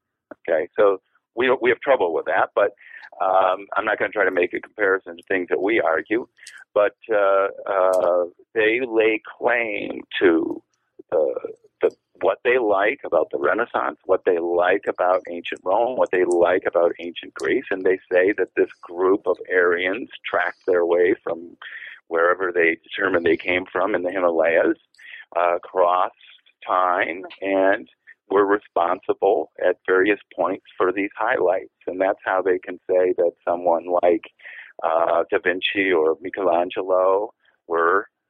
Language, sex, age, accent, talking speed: English, male, 50-69, American, 155 wpm